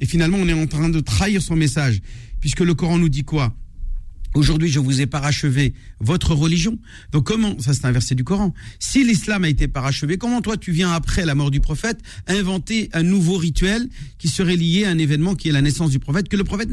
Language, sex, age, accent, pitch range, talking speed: French, male, 50-69, French, 125-175 Hz, 230 wpm